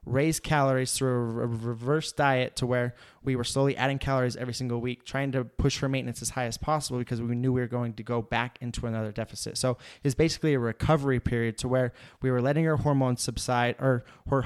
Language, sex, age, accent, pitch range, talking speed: English, male, 20-39, American, 120-140 Hz, 220 wpm